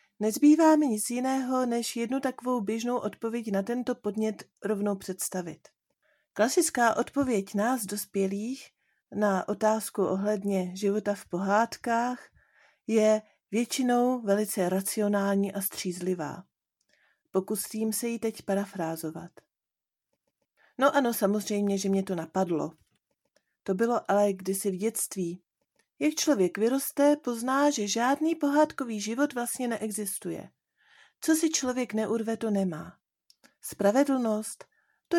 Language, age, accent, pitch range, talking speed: Czech, 40-59, native, 200-250 Hz, 115 wpm